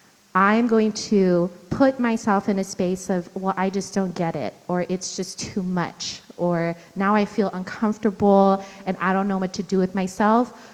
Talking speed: 190 wpm